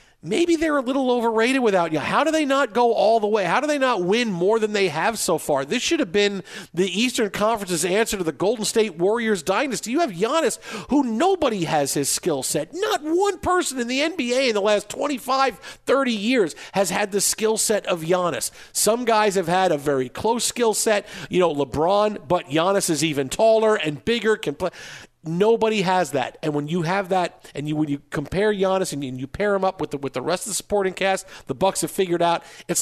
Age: 50-69